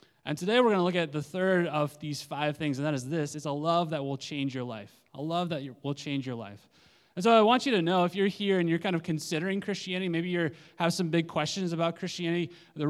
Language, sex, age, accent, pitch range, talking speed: English, male, 20-39, American, 145-185 Hz, 265 wpm